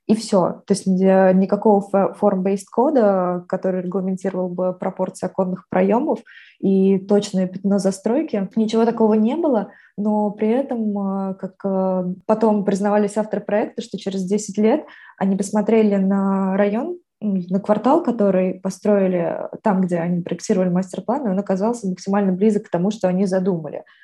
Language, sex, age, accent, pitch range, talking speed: Russian, female, 20-39, native, 190-215 Hz, 135 wpm